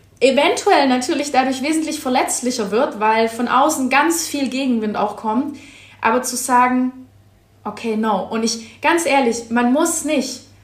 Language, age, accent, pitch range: German, 20-39, German, 225-285 Hz